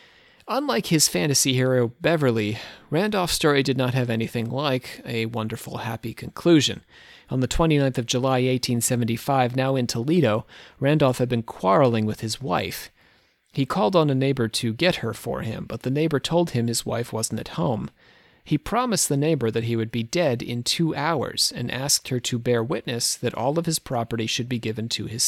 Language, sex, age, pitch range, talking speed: English, male, 30-49, 115-160 Hz, 190 wpm